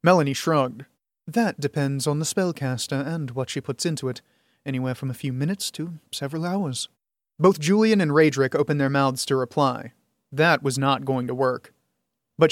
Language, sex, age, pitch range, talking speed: English, male, 30-49, 135-160 Hz, 175 wpm